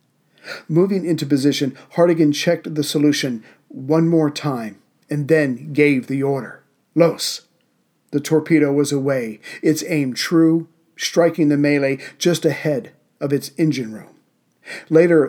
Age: 50-69